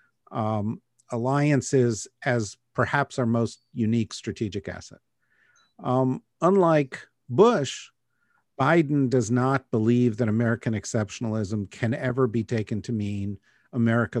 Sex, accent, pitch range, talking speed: male, American, 110-130 Hz, 110 wpm